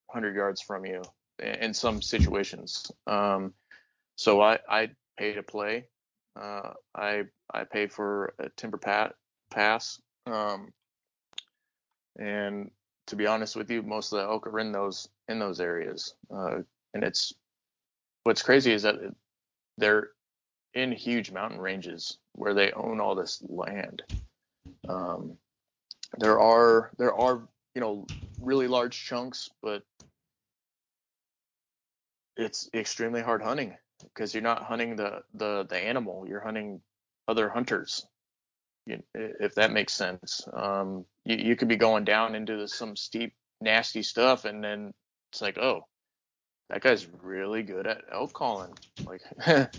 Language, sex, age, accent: English, male, 20-39, American